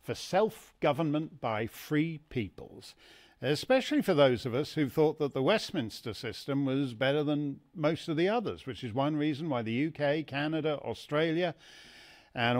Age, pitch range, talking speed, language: 50-69, 130-185 Hz, 155 wpm, English